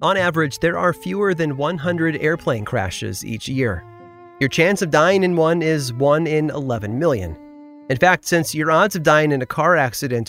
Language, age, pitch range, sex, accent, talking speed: English, 30-49, 110-160 Hz, male, American, 190 wpm